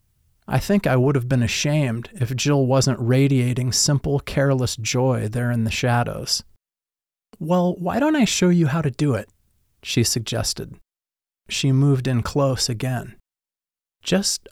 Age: 30-49